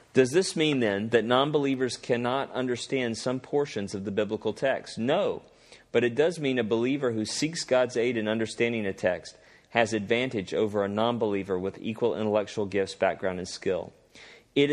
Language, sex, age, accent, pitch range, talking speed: English, male, 40-59, American, 105-130 Hz, 170 wpm